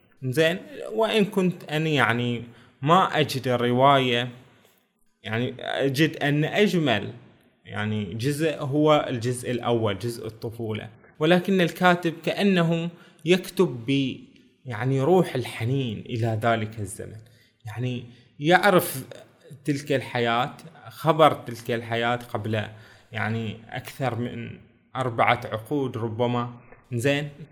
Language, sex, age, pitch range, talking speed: Arabic, male, 20-39, 120-150 Hz, 100 wpm